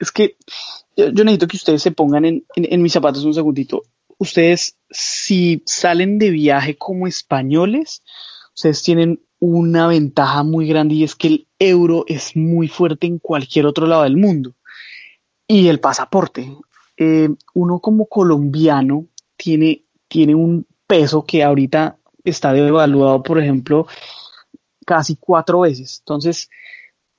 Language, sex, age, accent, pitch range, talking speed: Spanish, male, 20-39, Colombian, 155-175 Hz, 140 wpm